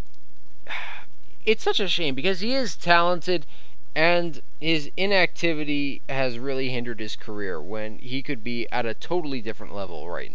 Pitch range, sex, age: 130-195 Hz, male, 20-39